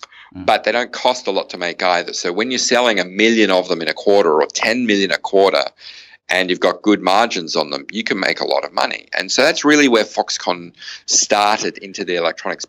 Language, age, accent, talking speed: English, 40-59, Australian, 230 wpm